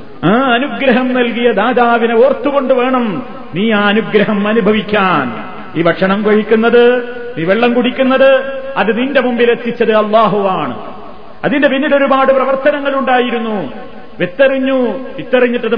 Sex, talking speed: male, 105 wpm